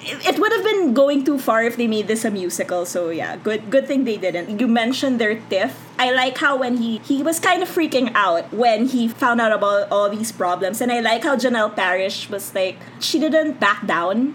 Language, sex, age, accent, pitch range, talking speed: English, female, 20-39, Filipino, 210-275 Hz, 230 wpm